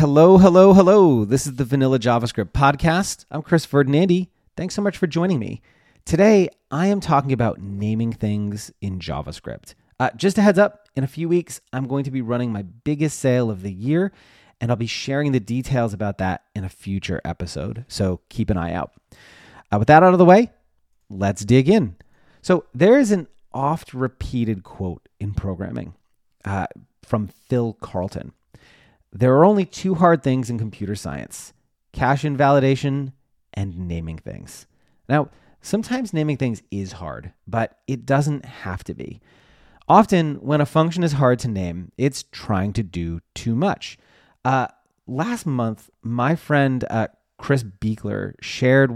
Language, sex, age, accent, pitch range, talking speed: English, male, 30-49, American, 100-150 Hz, 165 wpm